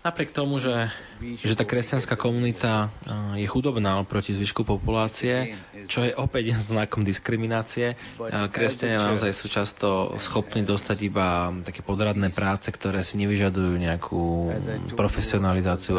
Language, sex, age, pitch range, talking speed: Slovak, male, 20-39, 95-115 Hz, 115 wpm